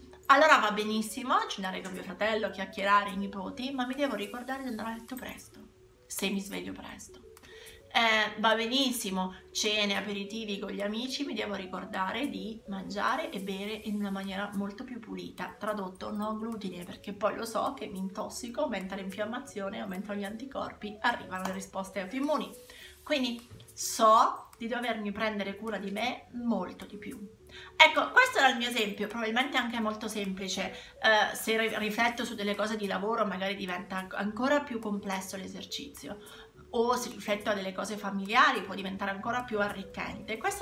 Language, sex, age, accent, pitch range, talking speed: Italian, female, 30-49, native, 200-245 Hz, 165 wpm